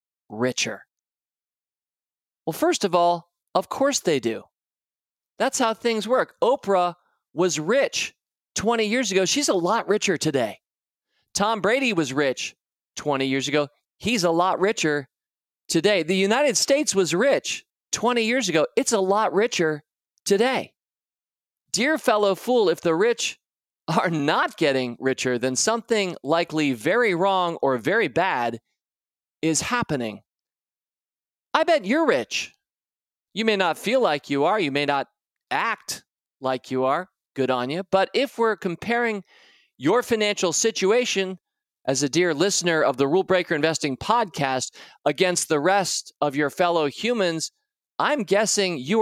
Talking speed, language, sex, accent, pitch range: 145 wpm, English, male, American, 145-225 Hz